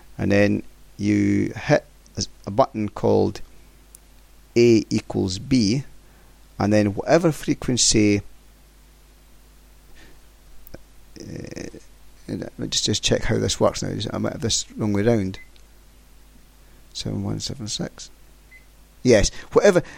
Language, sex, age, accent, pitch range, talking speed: English, male, 40-59, British, 105-135 Hz, 110 wpm